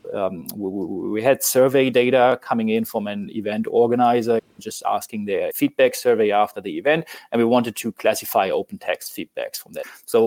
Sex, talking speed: male, 180 wpm